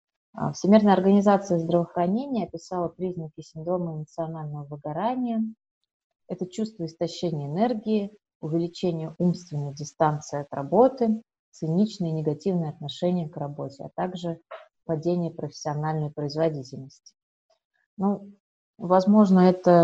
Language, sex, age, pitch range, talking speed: Russian, female, 30-49, 155-190 Hz, 95 wpm